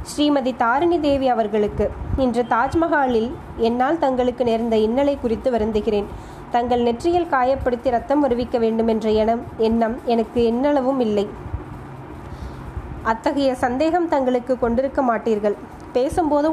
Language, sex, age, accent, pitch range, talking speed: Tamil, female, 20-39, native, 230-280 Hz, 110 wpm